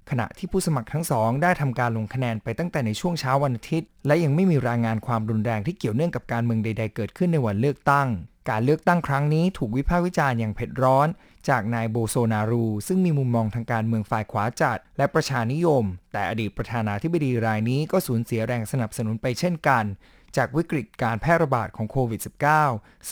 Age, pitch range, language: 20-39, 115-145 Hz, Thai